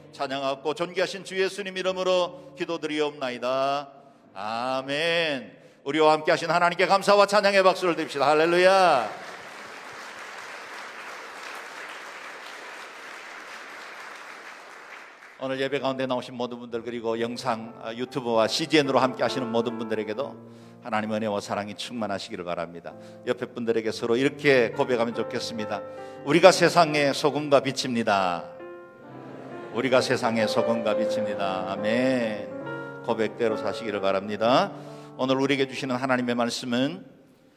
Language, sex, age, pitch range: Korean, male, 50-69, 115-140 Hz